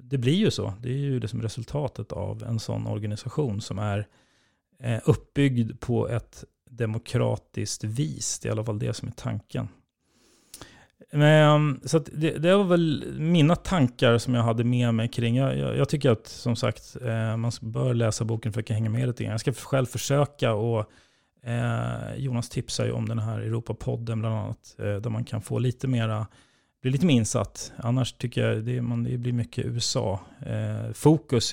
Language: English